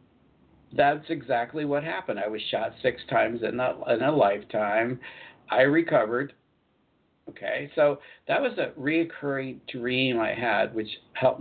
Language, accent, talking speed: English, American, 140 wpm